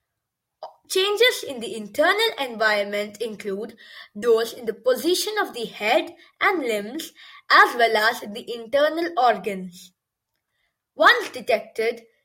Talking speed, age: 115 wpm, 20-39